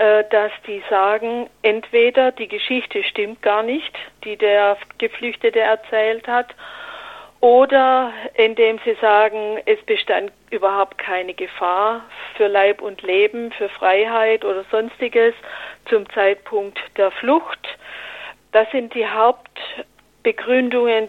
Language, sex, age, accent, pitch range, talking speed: German, female, 50-69, German, 205-255 Hz, 110 wpm